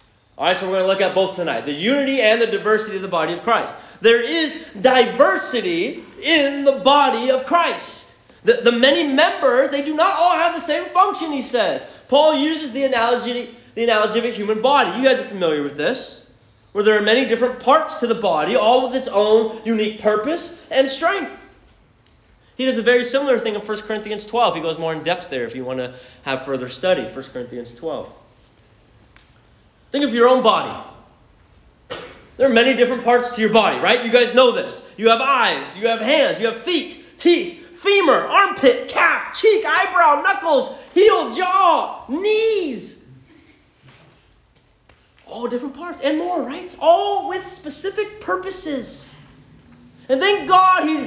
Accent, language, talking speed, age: American, English, 175 wpm, 30-49